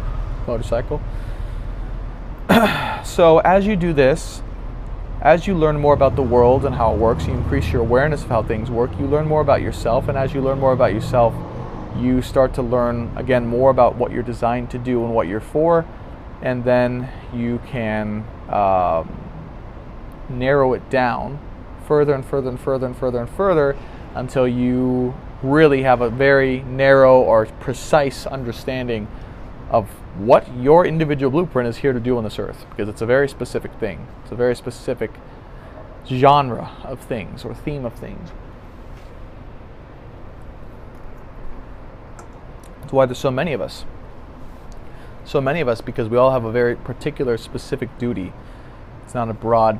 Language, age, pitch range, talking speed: English, 20-39, 110-135 Hz, 160 wpm